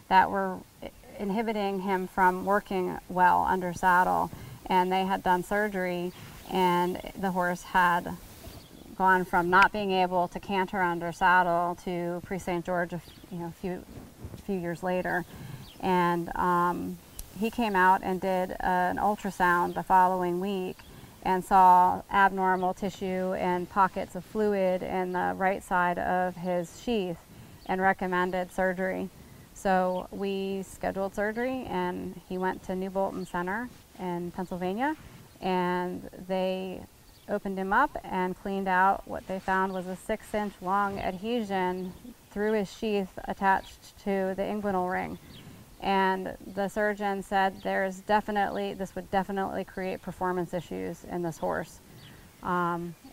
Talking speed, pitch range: 140 wpm, 180-195 Hz